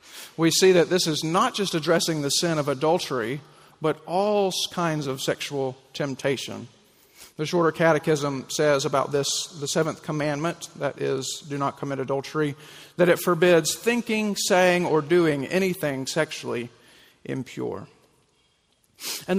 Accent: American